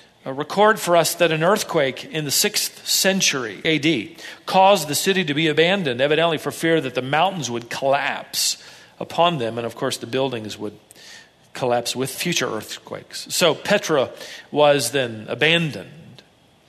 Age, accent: 40-59, American